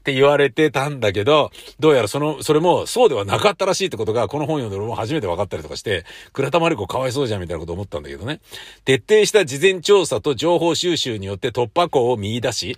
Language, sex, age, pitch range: Japanese, male, 50-69, 90-155 Hz